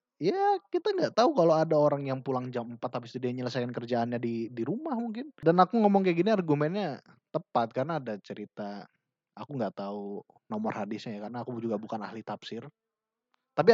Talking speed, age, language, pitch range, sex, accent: 185 wpm, 20-39, Indonesian, 115-165 Hz, male, native